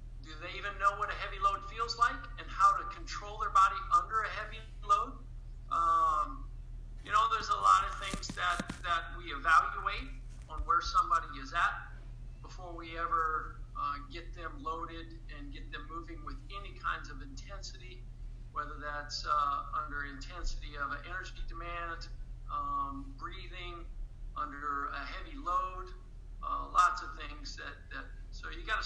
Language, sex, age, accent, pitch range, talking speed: English, male, 50-69, American, 120-180 Hz, 160 wpm